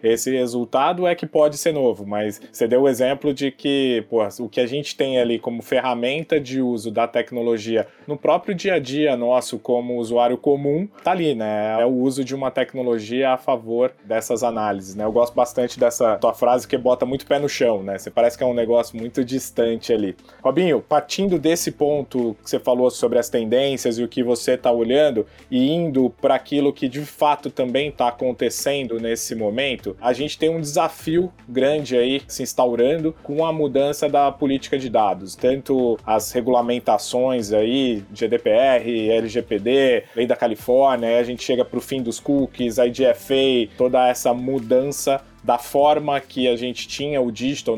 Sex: male